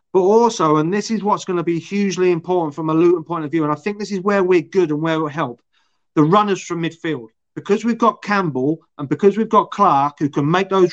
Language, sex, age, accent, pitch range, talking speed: English, male, 30-49, British, 150-185 Hz, 260 wpm